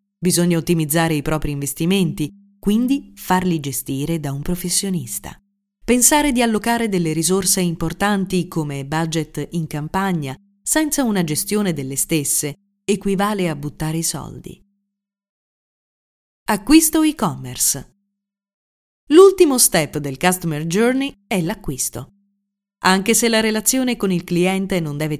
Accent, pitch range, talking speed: native, 160-215 Hz, 115 wpm